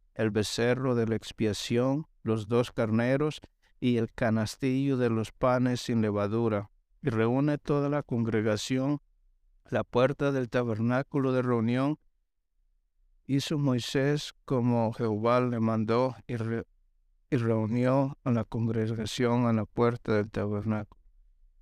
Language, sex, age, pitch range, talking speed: English, male, 60-79, 105-125 Hz, 125 wpm